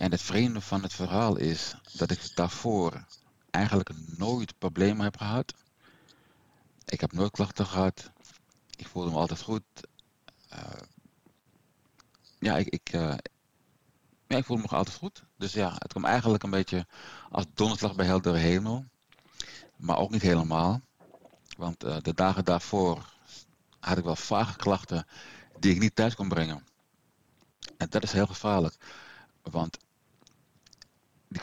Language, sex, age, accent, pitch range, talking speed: Dutch, male, 50-69, Dutch, 85-105 Hz, 145 wpm